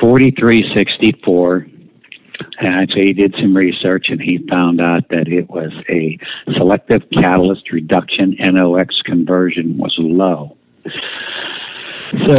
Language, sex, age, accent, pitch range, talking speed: English, male, 60-79, American, 90-110 Hz, 110 wpm